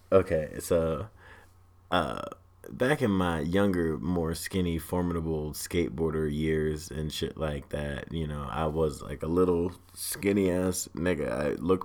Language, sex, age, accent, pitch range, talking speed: English, male, 30-49, American, 75-90 Hz, 135 wpm